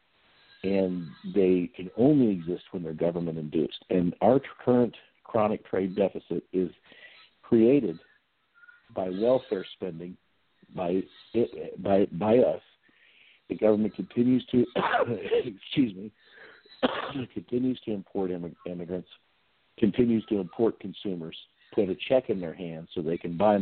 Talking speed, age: 120 wpm, 60-79